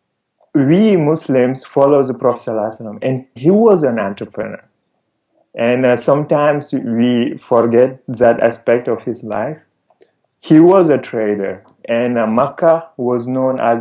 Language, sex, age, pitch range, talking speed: English, male, 30-49, 115-135 Hz, 130 wpm